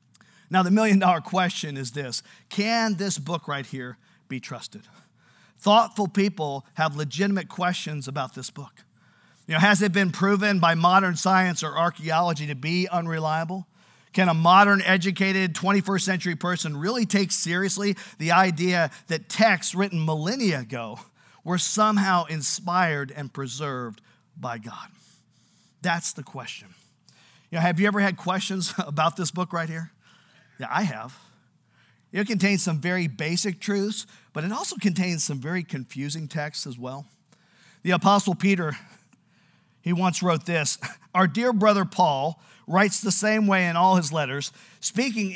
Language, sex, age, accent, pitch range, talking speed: English, male, 50-69, American, 160-200 Hz, 150 wpm